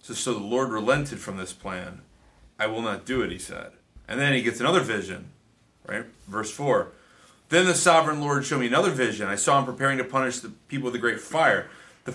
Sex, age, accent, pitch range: male, 30-49, American, 110-140 Hz